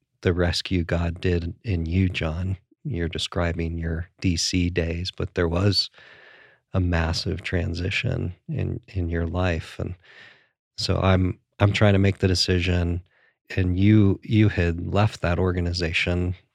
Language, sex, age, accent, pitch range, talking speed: English, male, 40-59, American, 85-100 Hz, 140 wpm